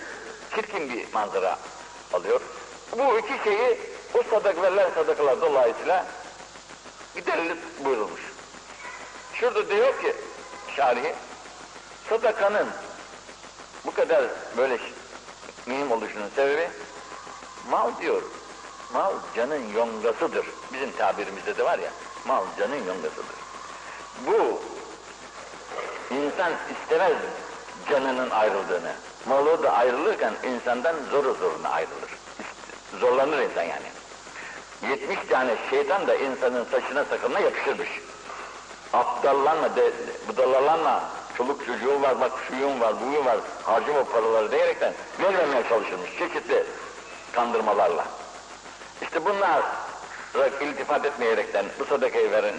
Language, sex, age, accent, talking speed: Turkish, male, 60-79, native, 100 wpm